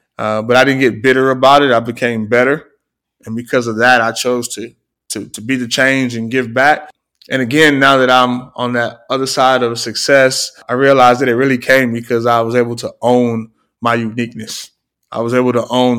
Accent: American